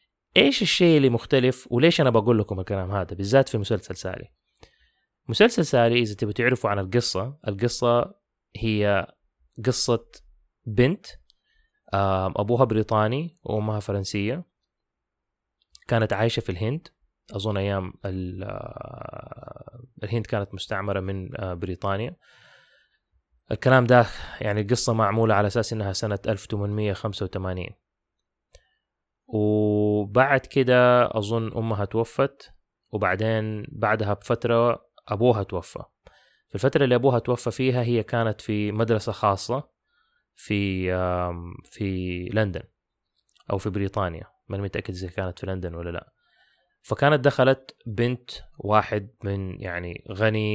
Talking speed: 105 wpm